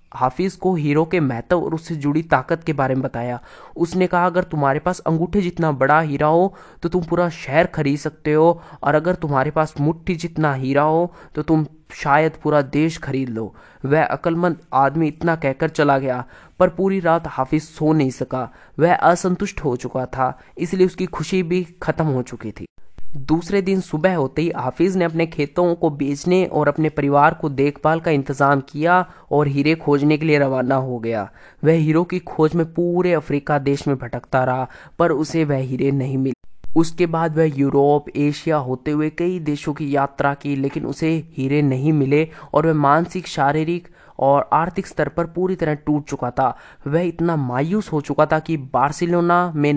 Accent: native